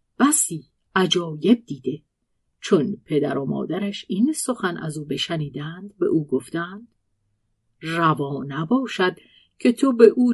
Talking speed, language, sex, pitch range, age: 120 wpm, Persian, female, 160-235 Hz, 50-69